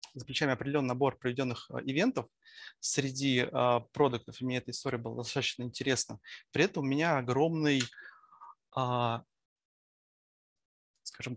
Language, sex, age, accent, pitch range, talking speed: Russian, male, 20-39, native, 125-145 Hz, 105 wpm